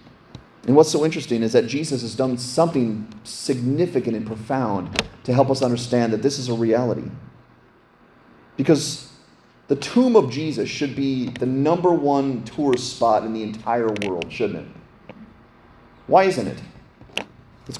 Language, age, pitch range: English, 30-49, 110-145 Hz